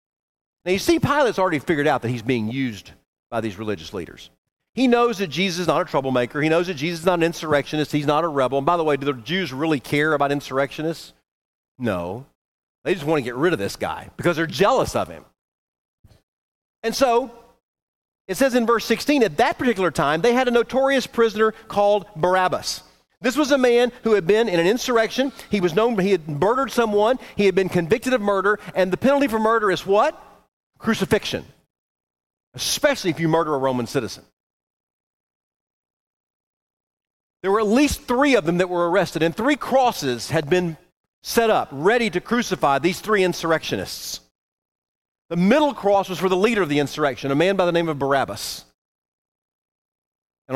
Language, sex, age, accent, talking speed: English, male, 40-59, American, 190 wpm